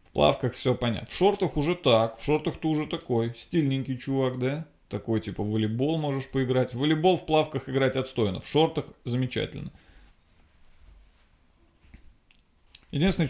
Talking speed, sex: 145 wpm, male